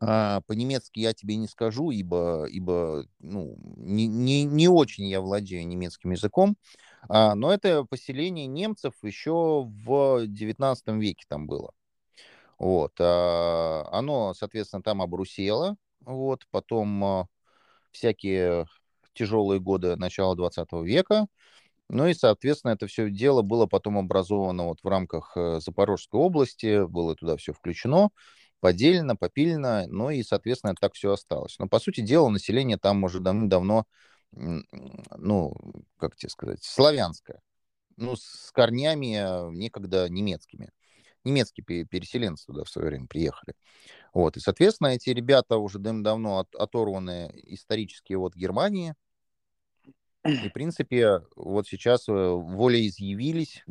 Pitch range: 95-125 Hz